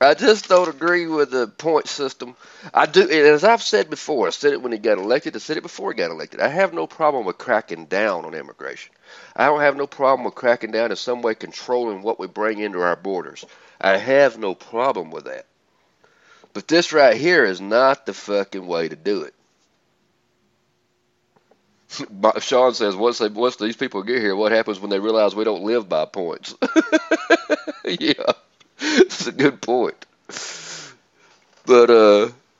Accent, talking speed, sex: American, 180 wpm, male